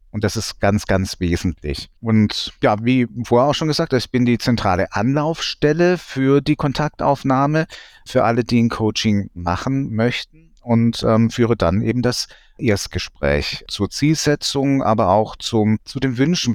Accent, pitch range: German, 105-130 Hz